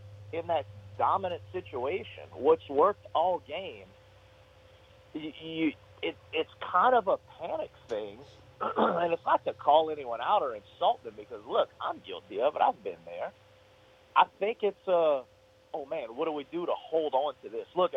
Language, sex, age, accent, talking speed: English, male, 40-59, American, 175 wpm